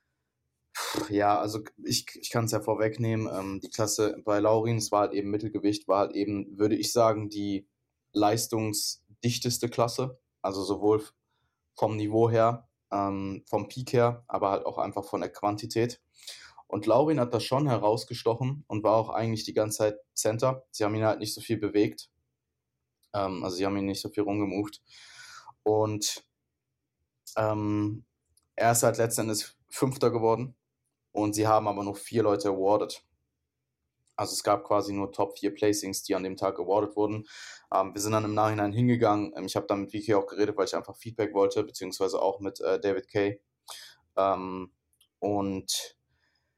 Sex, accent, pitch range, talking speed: male, German, 100-120 Hz, 165 wpm